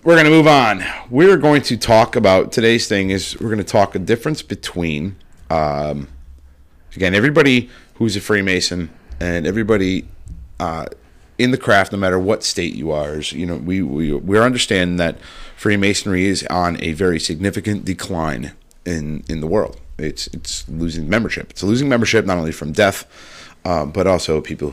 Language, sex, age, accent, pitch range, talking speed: English, male, 30-49, American, 80-110 Hz, 175 wpm